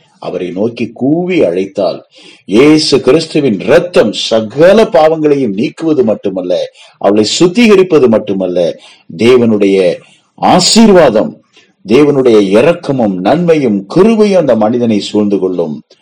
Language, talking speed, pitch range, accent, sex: Tamil, 90 wpm, 105-170 Hz, native, male